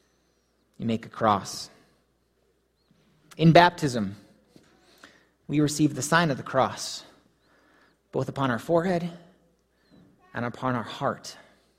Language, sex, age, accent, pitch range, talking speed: English, male, 30-49, American, 115-165 Hz, 105 wpm